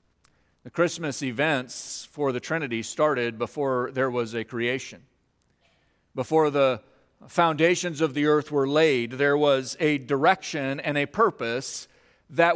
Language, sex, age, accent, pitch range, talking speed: English, male, 40-59, American, 130-175 Hz, 135 wpm